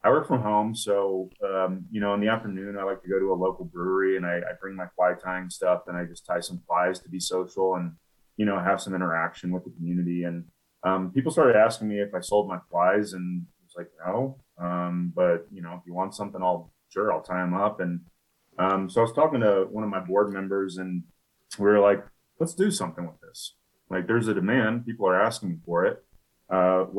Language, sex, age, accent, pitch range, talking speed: English, male, 30-49, American, 90-100 Hz, 235 wpm